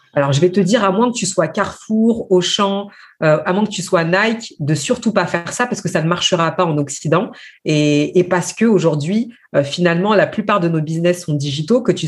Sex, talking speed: female, 240 wpm